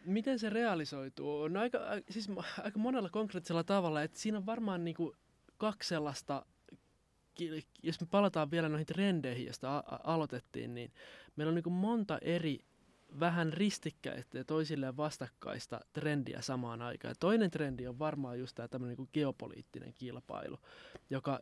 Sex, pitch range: male, 130-165 Hz